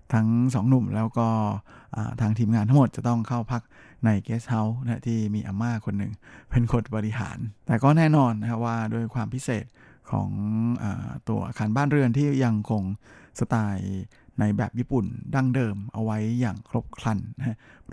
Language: Thai